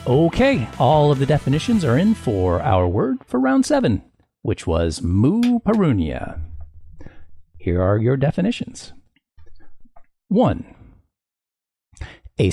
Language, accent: English, American